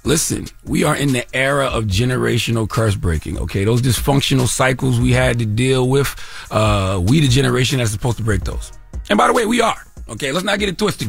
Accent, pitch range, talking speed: American, 115-150 Hz, 215 wpm